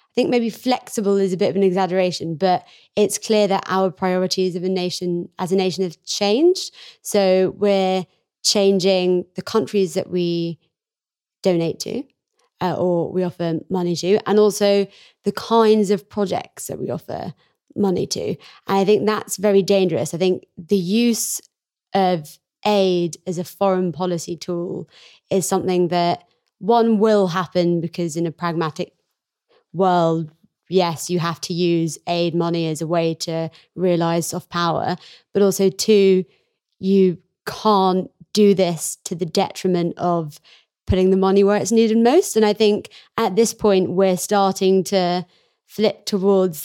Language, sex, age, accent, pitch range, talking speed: English, female, 20-39, British, 175-200 Hz, 155 wpm